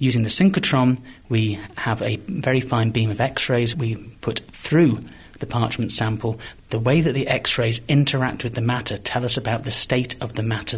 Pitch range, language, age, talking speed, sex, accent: 105-125 Hz, English, 30-49, 190 wpm, male, British